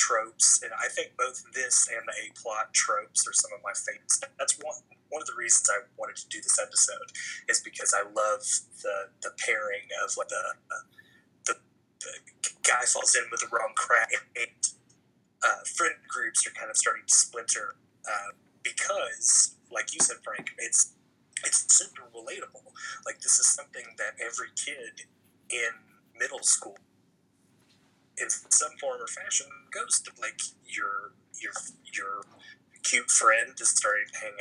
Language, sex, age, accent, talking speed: English, male, 30-49, American, 165 wpm